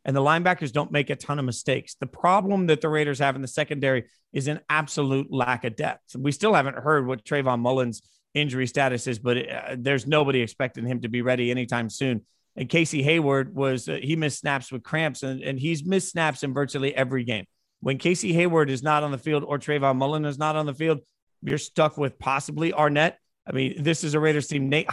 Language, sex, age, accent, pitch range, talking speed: English, male, 30-49, American, 130-150 Hz, 225 wpm